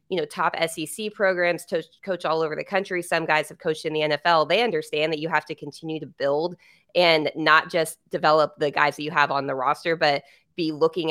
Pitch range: 150-180 Hz